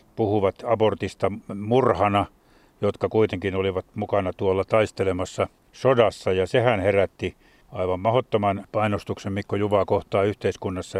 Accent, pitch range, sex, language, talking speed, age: native, 95-115 Hz, male, Finnish, 110 wpm, 50-69